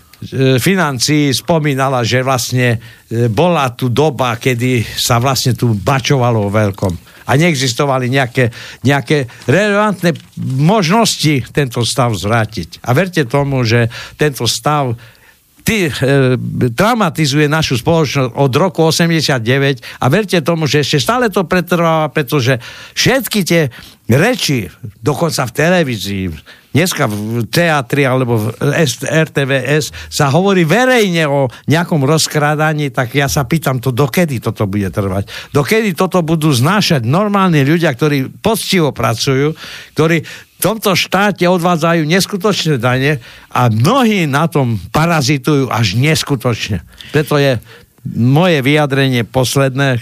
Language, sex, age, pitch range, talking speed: Slovak, male, 60-79, 125-160 Hz, 120 wpm